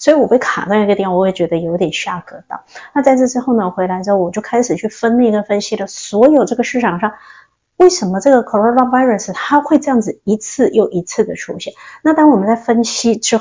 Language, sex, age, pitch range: Chinese, female, 30-49, 185-255 Hz